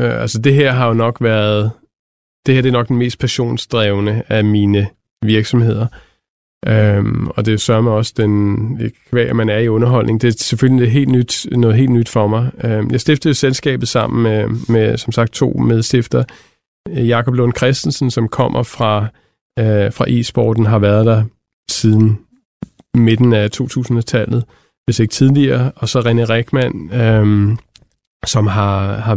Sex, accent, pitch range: male, native, 110-125 Hz